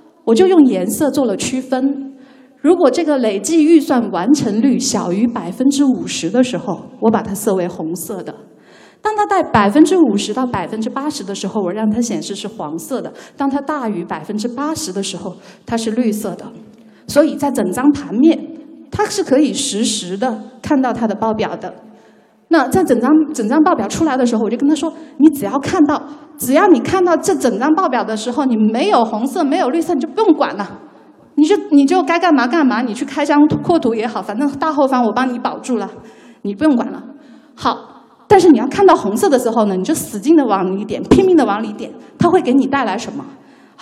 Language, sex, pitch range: Chinese, female, 225-305 Hz